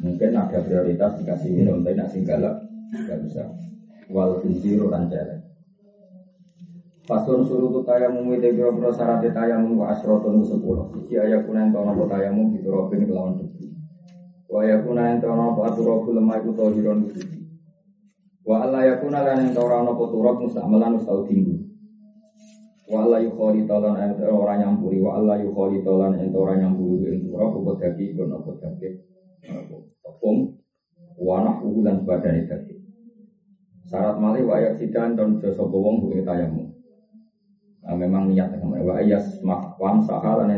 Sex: male